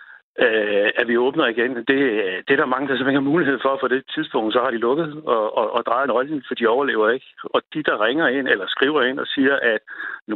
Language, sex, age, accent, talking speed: Danish, male, 60-79, native, 250 wpm